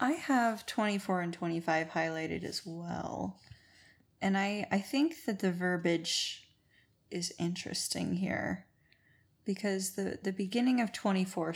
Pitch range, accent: 180-215 Hz, American